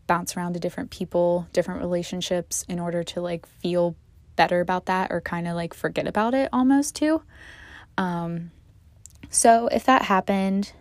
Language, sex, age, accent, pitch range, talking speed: English, female, 20-39, American, 170-205 Hz, 160 wpm